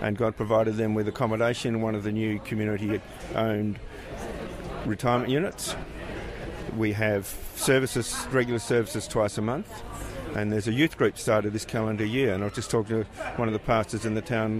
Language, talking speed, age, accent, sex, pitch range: English, 180 wpm, 50-69, Australian, male, 100-120 Hz